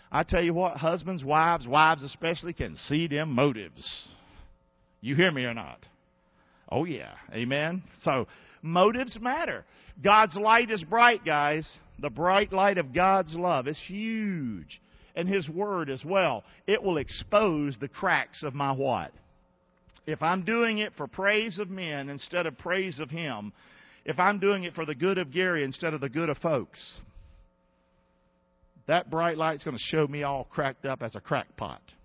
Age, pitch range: 50-69, 150-210 Hz